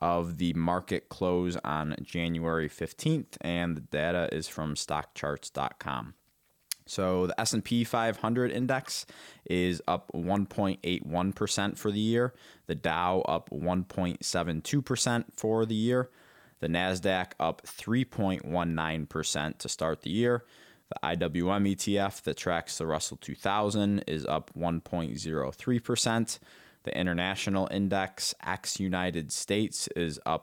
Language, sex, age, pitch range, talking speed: English, male, 20-39, 80-100 Hz, 115 wpm